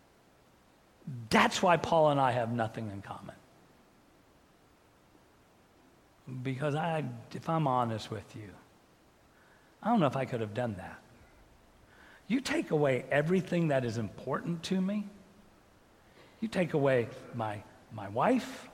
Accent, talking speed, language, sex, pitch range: American, 130 wpm, English, male, 115-185 Hz